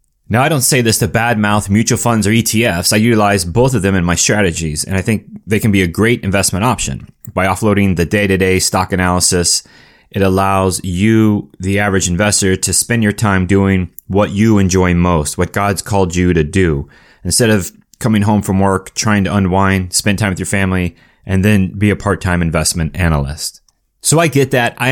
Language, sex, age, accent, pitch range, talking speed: English, male, 30-49, American, 95-115 Hz, 200 wpm